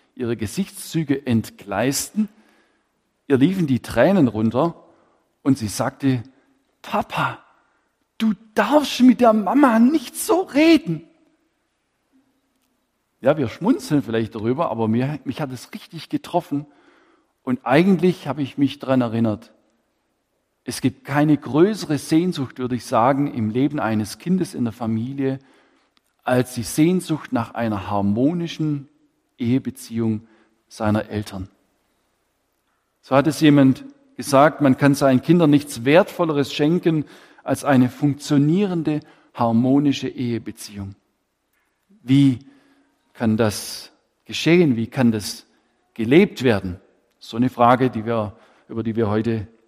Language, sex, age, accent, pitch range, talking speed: German, male, 50-69, German, 115-165 Hz, 120 wpm